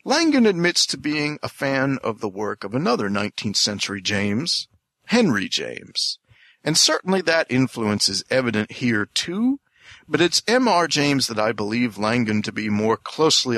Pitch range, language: 115-165 Hz, English